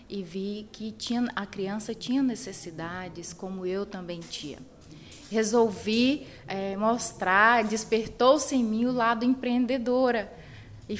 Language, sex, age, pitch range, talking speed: Portuguese, female, 20-39, 185-220 Hz, 120 wpm